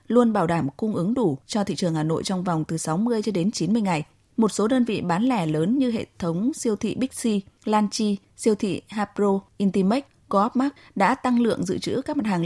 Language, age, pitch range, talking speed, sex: Vietnamese, 20-39, 170-225 Hz, 225 wpm, female